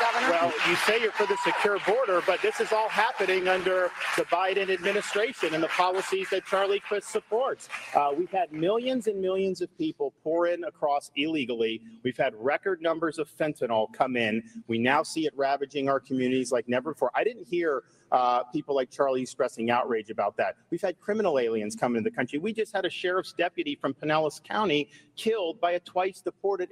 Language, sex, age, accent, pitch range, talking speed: Swedish, male, 40-59, American, 135-205 Hz, 195 wpm